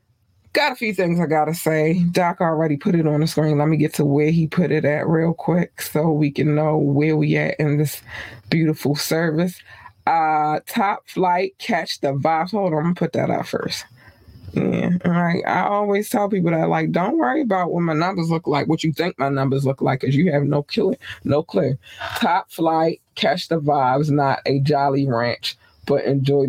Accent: American